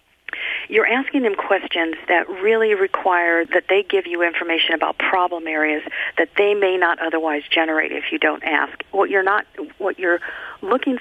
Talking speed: 170 wpm